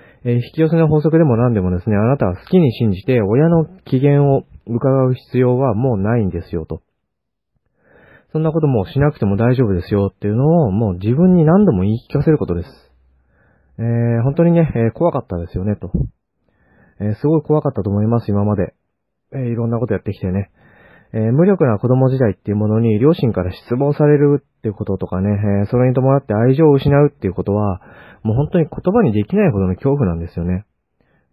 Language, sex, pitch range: Japanese, male, 100-145 Hz